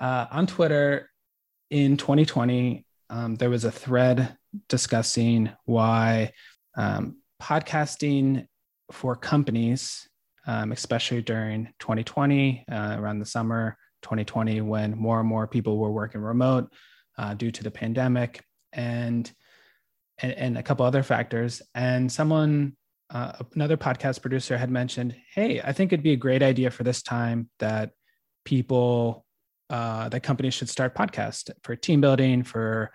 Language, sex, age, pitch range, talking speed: English, male, 20-39, 115-135 Hz, 140 wpm